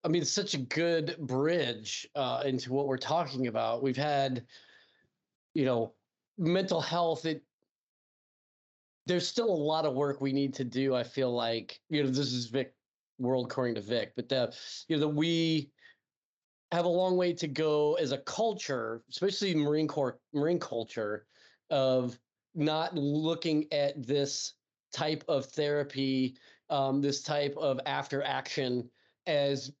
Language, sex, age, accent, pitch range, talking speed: English, male, 30-49, American, 130-165 Hz, 155 wpm